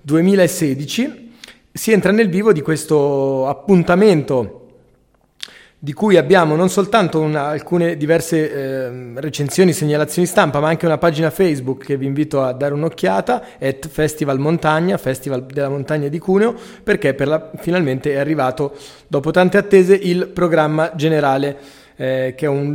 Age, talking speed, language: 30-49, 135 wpm, Italian